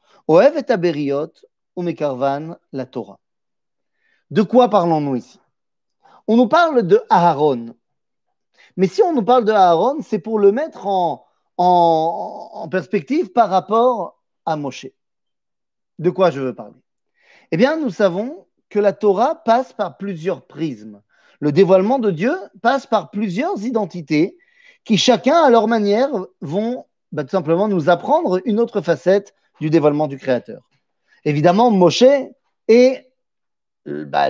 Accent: French